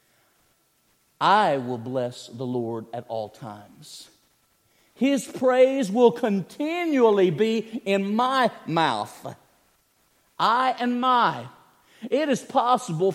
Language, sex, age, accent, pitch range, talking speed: English, male, 50-69, American, 155-245 Hz, 100 wpm